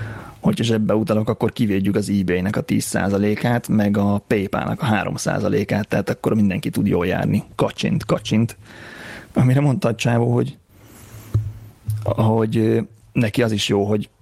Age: 30-49